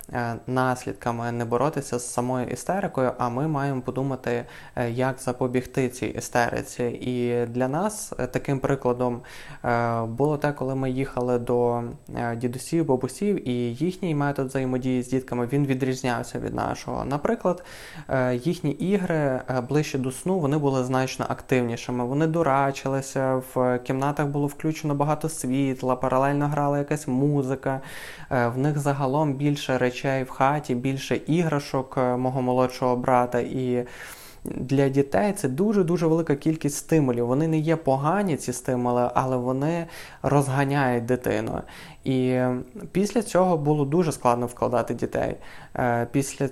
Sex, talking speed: male, 125 wpm